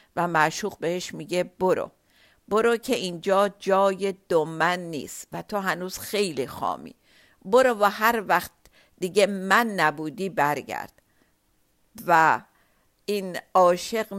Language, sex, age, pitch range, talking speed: Persian, female, 50-69, 160-200 Hz, 115 wpm